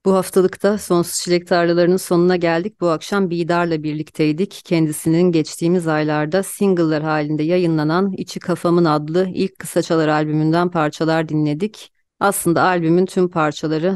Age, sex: 30-49, female